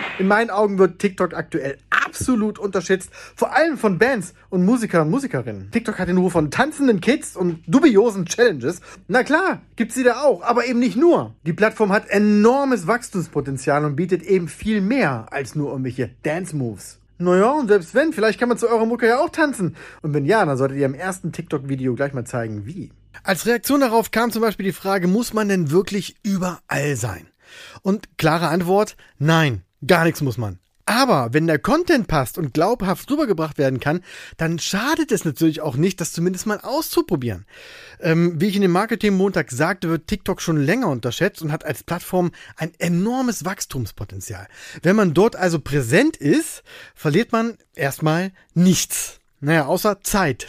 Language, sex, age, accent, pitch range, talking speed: German, male, 30-49, German, 145-220 Hz, 180 wpm